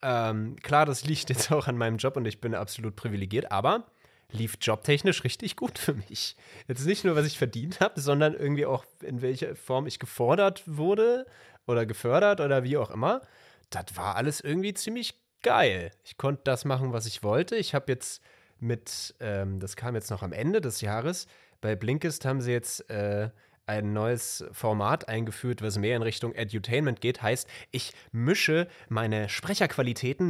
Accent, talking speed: German, 180 wpm